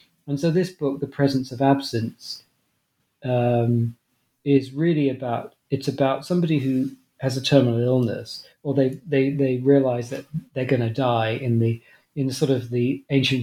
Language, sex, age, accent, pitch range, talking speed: English, male, 40-59, British, 120-145 Hz, 165 wpm